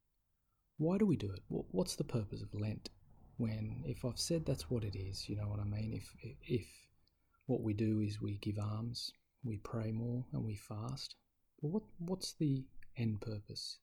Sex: male